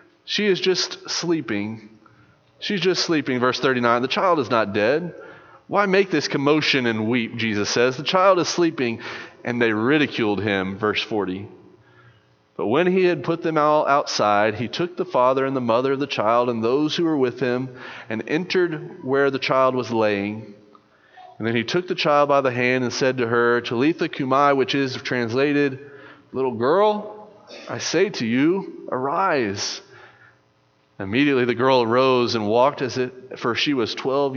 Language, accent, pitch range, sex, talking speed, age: English, American, 115-150 Hz, male, 175 wpm, 30-49